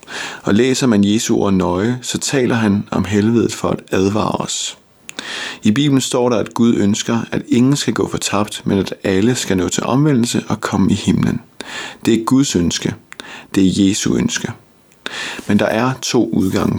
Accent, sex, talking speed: native, male, 185 wpm